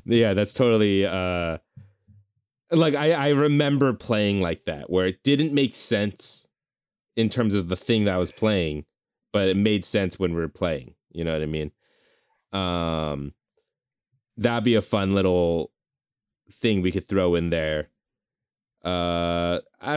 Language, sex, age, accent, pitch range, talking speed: English, male, 20-39, American, 85-110 Hz, 155 wpm